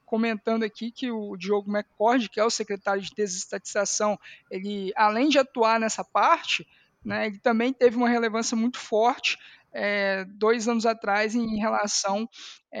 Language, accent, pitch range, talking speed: Portuguese, Brazilian, 210-260 Hz, 145 wpm